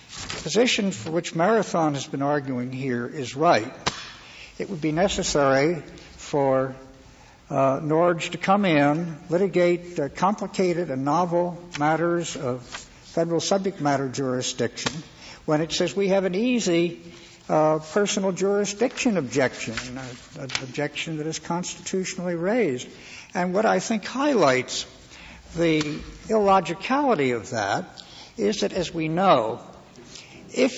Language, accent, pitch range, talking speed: English, American, 135-180 Hz, 125 wpm